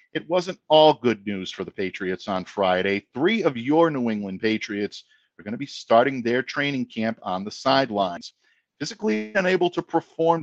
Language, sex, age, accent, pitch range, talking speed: English, male, 50-69, American, 105-135 Hz, 180 wpm